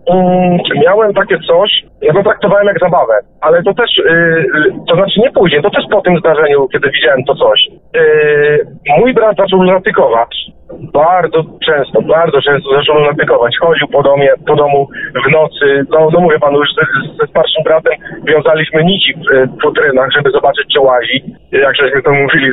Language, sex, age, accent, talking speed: Polish, male, 40-59, native, 170 wpm